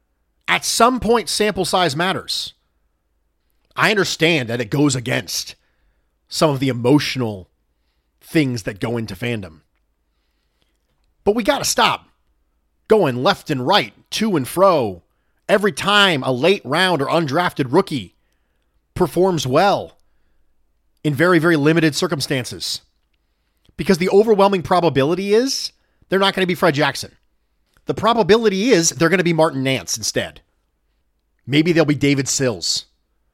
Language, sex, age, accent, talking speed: English, male, 40-59, American, 135 wpm